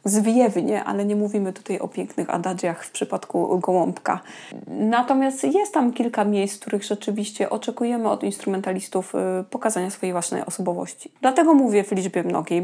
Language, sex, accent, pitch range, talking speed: Polish, female, native, 190-230 Hz, 145 wpm